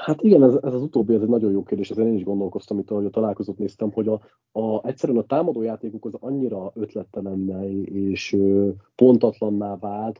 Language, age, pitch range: Hungarian, 30-49, 105-120 Hz